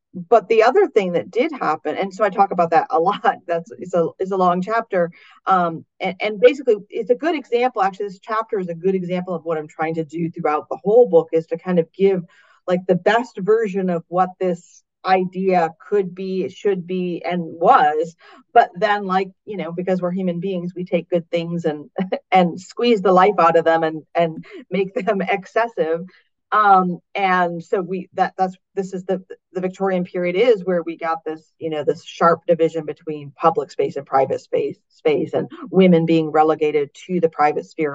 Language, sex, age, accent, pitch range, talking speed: English, female, 40-59, American, 165-210 Hz, 205 wpm